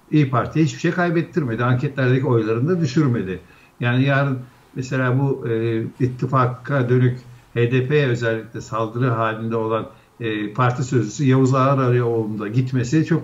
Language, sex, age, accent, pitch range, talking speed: Turkish, male, 60-79, native, 120-145 Hz, 125 wpm